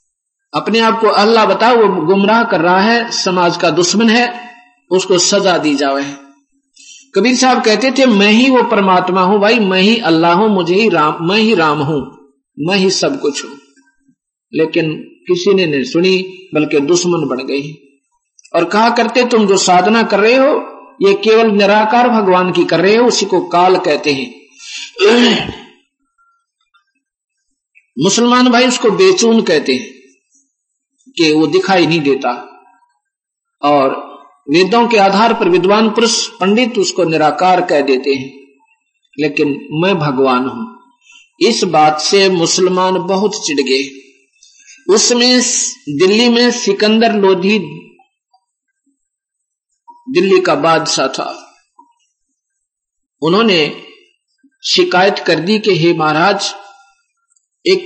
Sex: male